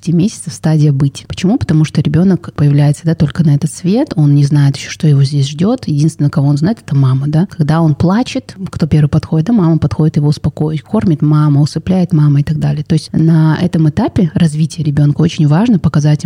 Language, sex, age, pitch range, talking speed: Russian, female, 20-39, 145-175 Hz, 215 wpm